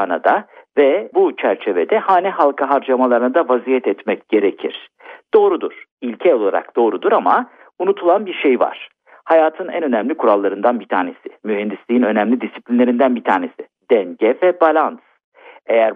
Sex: male